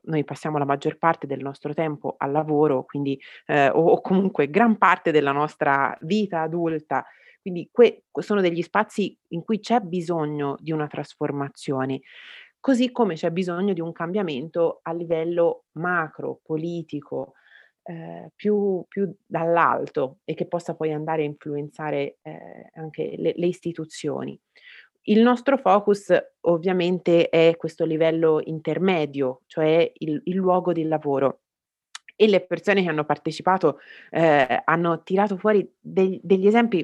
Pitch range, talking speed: 155-200 Hz, 140 wpm